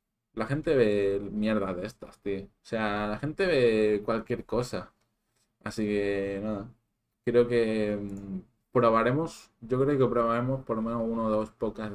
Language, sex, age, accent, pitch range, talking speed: Spanish, male, 20-39, Spanish, 100-115 Hz, 155 wpm